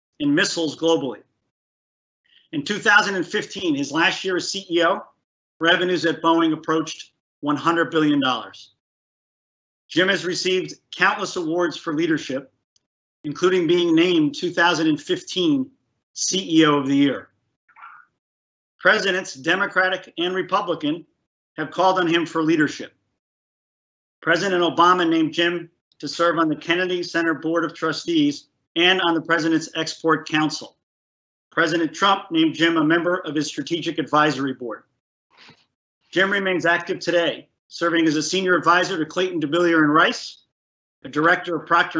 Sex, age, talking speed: male, 40-59, 125 wpm